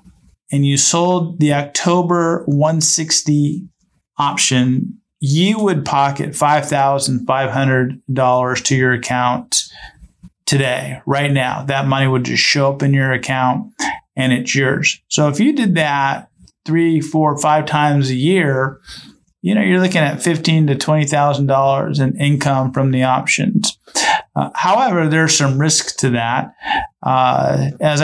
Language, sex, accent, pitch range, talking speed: English, male, American, 135-155 Hz, 135 wpm